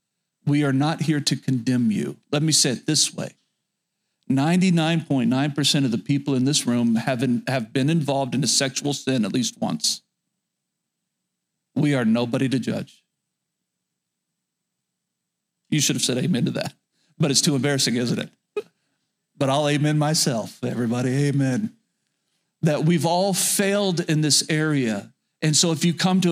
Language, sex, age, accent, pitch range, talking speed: English, male, 40-59, American, 135-165 Hz, 155 wpm